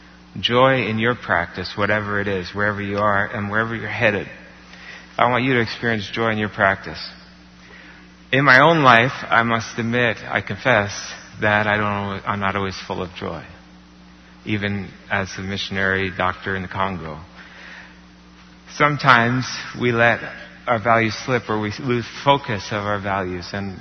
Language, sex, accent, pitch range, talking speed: English, male, American, 95-115 Hz, 160 wpm